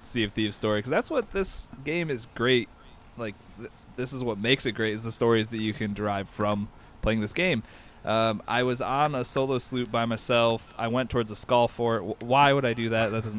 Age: 20-39